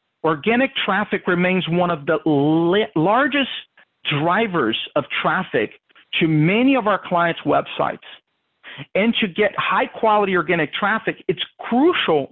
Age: 50-69